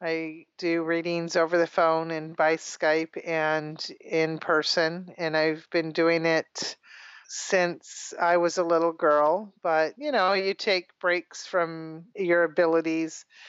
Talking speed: 140 wpm